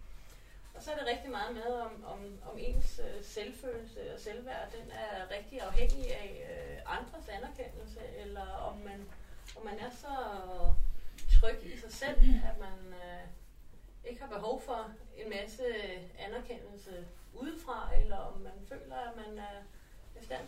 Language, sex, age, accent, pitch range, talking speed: Danish, female, 30-49, native, 195-265 Hz, 145 wpm